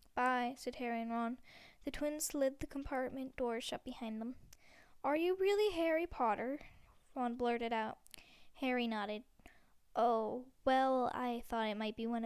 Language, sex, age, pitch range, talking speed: English, female, 10-29, 235-275 Hz, 155 wpm